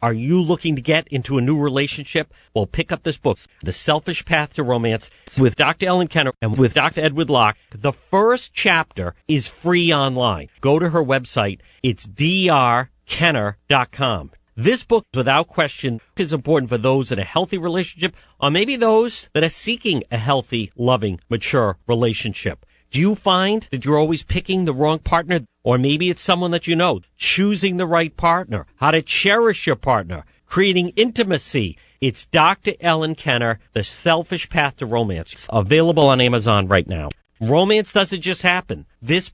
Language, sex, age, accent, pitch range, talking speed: English, male, 50-69, American, 120-170 Hz, 170 wpm